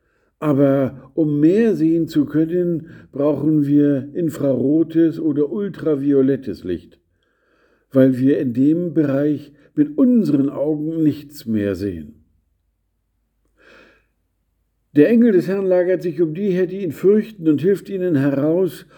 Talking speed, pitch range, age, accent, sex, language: 120 wpm, 120-160 Hz, 50-69, German, male, German